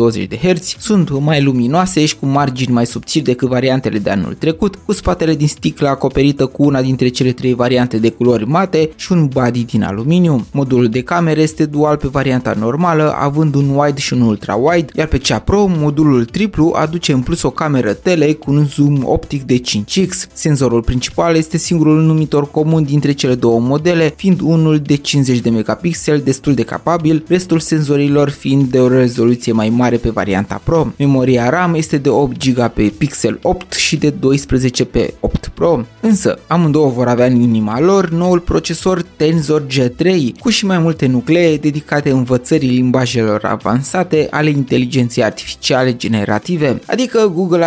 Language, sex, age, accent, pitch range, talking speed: Romanian, male, 20-39, native, 125-160 Hz, 170 wpm